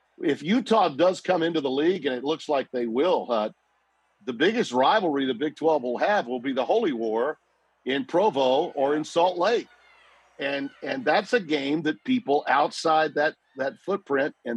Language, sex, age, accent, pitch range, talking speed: English, male, 50-69, American, 120-160 Hz, 185 wpm